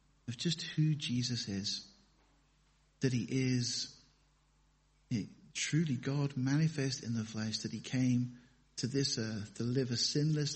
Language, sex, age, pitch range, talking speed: English, male, 50-69, 120-140 Hz, 140 wpm